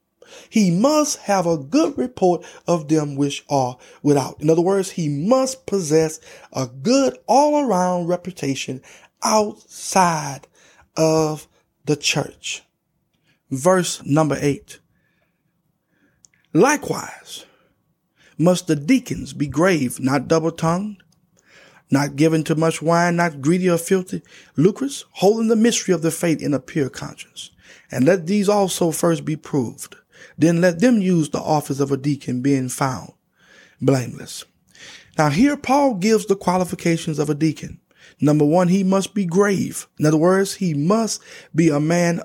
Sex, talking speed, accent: male, 140 wpm, American